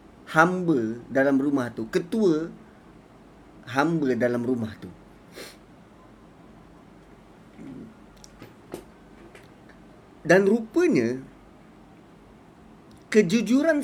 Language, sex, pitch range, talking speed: Malay, male, 160-240 Hz, 50 wpm